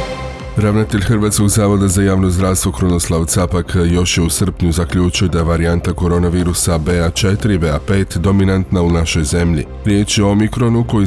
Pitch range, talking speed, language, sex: 85-105 Hz, 155 wpm, Croatian, male